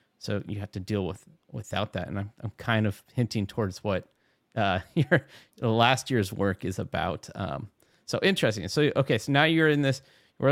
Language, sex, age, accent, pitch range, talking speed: English, male, 30-49, American, 105-135 Hz, 195 wpm